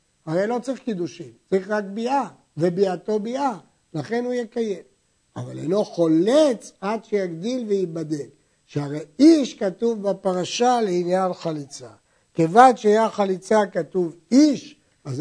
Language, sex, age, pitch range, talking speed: Hebrew, male, 60-79, 180-235 Hz, 120 wpm